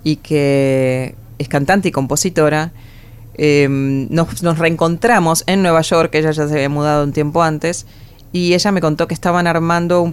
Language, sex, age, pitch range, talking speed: Spanish, female, 20-39, 130-165 Hz, 170 wpm